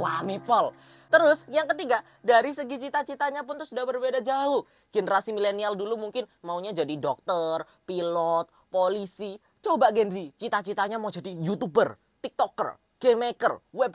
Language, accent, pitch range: Indonesian, native, 200-265 Hz